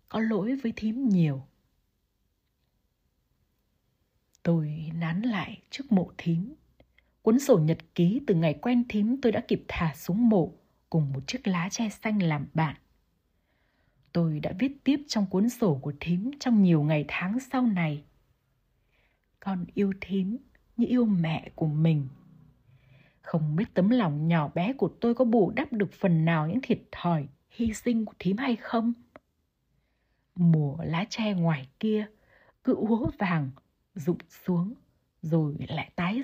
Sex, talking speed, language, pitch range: female, 150 wpm, Vietnamese, 165-230 Hz